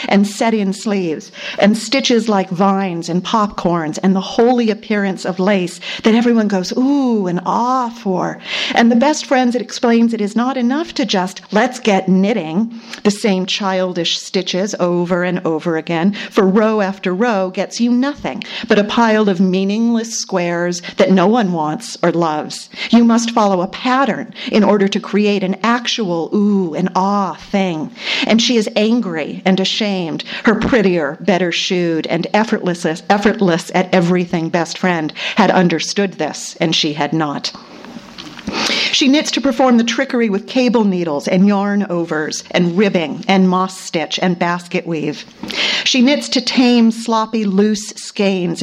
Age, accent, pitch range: 50-69, American, 180-230 Hz